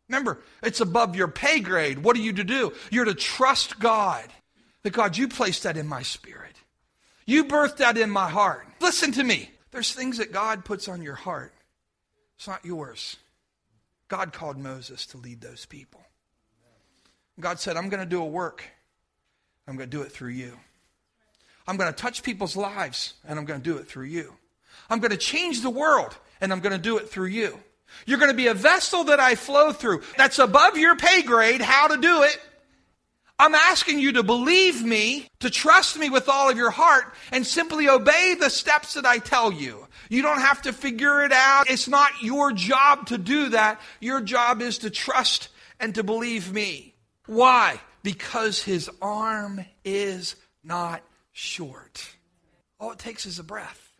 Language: English